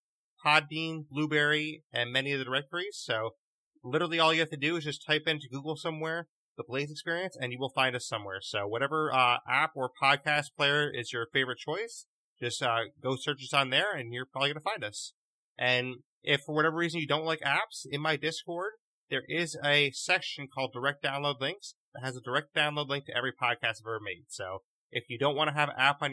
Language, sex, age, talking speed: English, male, 30-49, 220 wpm